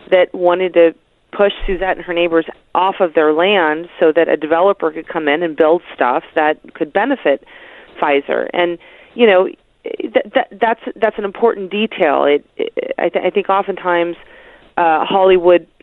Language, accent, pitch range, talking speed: English, American, 170-265 Hz, 170 wpm